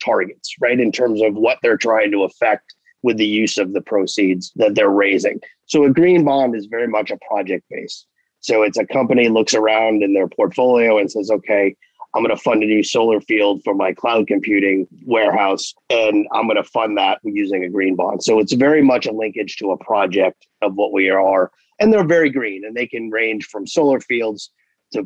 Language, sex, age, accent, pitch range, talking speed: English, male, 30-49, American, 100-125 Hz, 215 wpm